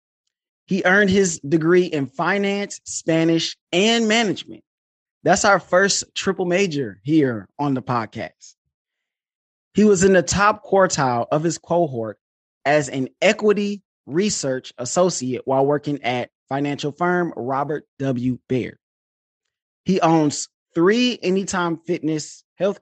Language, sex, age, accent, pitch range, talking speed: English, male, 20-39, American, 130-185 Hz, 120 wpm